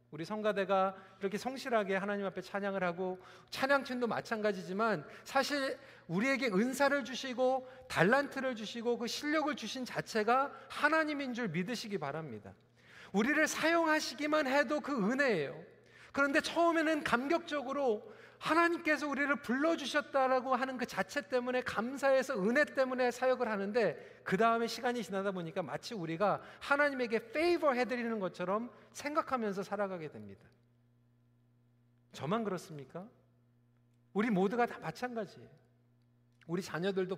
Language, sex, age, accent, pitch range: Korean, male, 40-59, native, 180-260 Hz